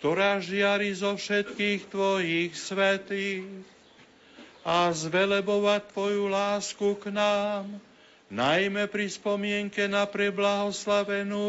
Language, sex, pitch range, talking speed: Slovak, male, 190-205 Hz, 90 wpm